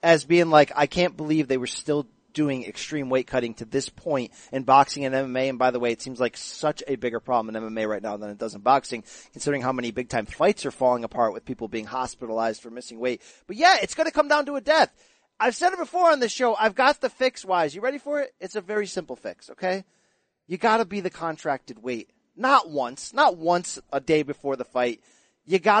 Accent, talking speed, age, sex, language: American, 245 wpm, 30-49, male, English